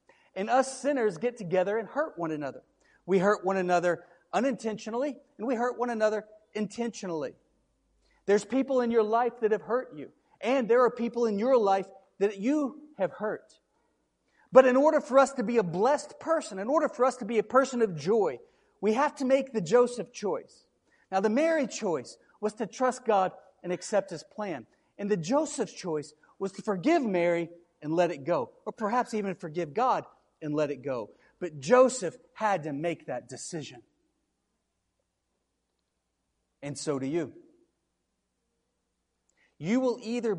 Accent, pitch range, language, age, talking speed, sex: American, 190-260 Hz, English, 40-59, 170 wpm, male